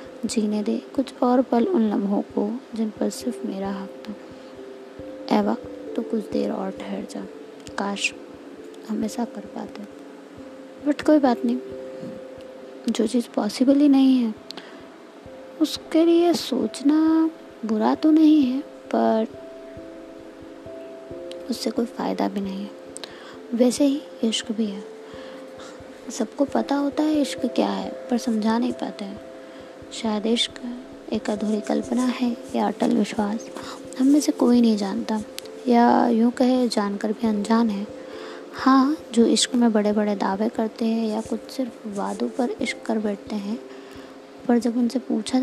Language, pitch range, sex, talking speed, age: Hindi, 210-260 Hz, female, 150 wpm, 20-39